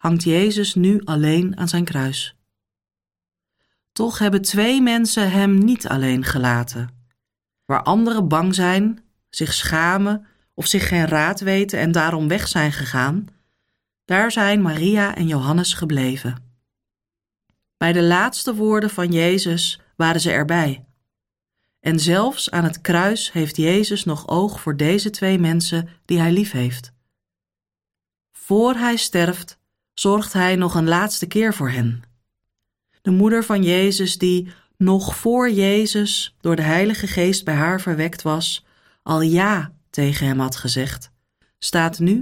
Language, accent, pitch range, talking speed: Dutch, Dutch, 125-190 Hz, 140 wpm